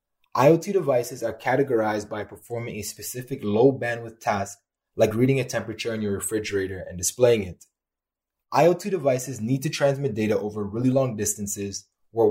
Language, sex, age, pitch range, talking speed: English, male, 20-39, 105-140 Hz, 155 wpm